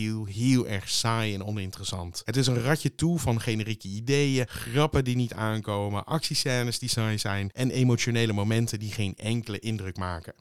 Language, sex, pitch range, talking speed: Dutch, male, 105-130 Hz, 175 wpm